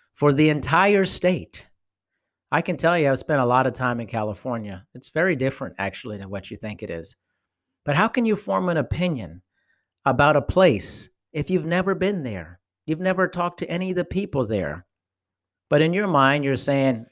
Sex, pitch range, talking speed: male, 105-165 Hz, 195 wpm